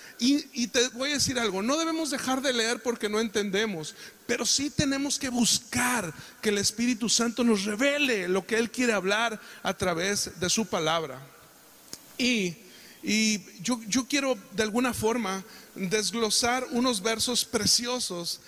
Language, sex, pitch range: Spanish, male, 185-245 Hz